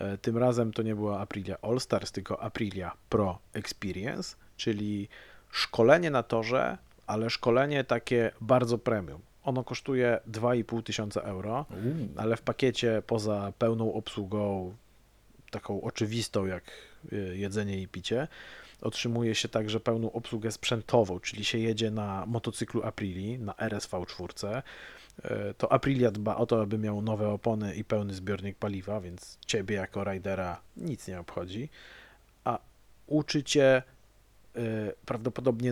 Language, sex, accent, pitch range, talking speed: Polish, male, native, 105-120 Hz, 125 wpm